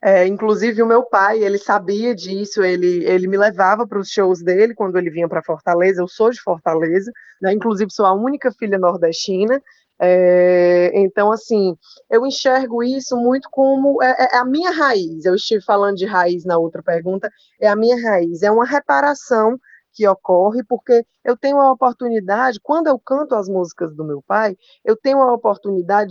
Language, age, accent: Portuguese, 20-39, Brazilian